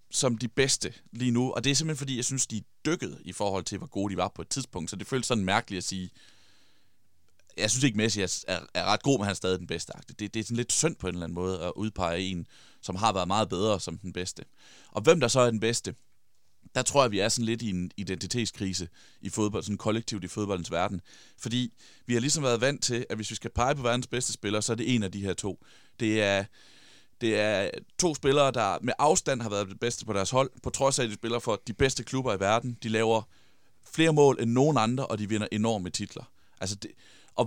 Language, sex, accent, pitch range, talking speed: Danish, male, native, 95-125 Hz, 255 wpm